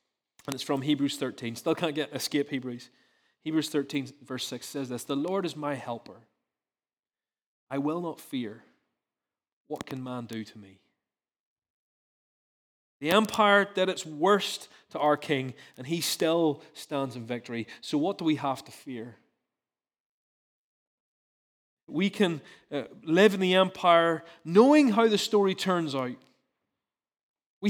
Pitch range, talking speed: 135-195 Hz, 140 wpm